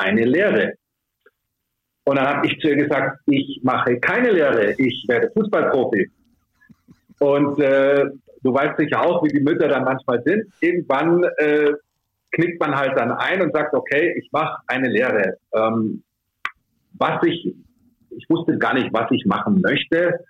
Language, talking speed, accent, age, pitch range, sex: German, 155 wpm, German, 50-69, 120-165 Hz, male